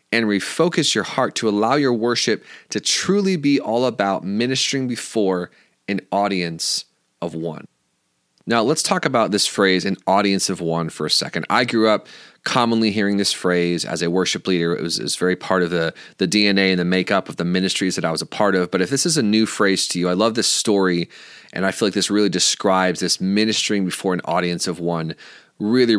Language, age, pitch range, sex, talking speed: English, 30-49, 90-110 Hz, male, 210 wpm